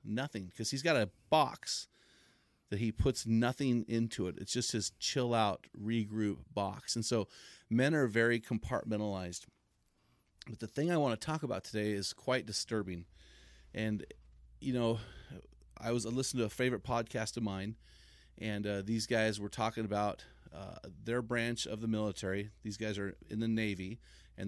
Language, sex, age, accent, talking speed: English, male, 30-49, American, 170 wpm